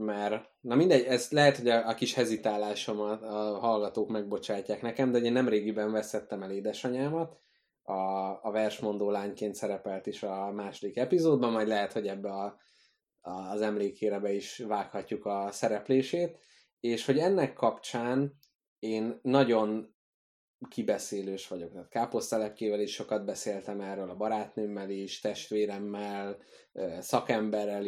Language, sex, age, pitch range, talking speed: Hungarian, male, 20-39, 105-130 Hz, 135 wpm